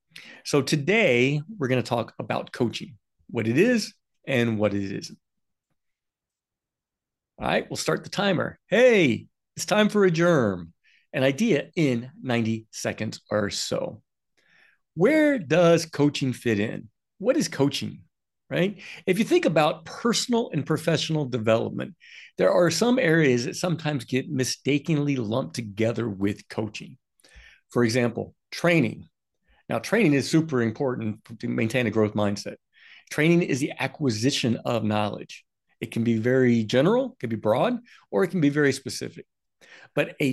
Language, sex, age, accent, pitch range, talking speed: English, male, 50-69, American, 120-170 Hz, 145 wpm